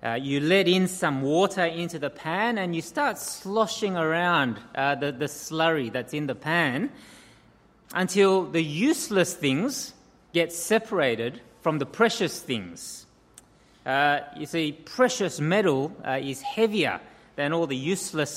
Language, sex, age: English, male, 30-49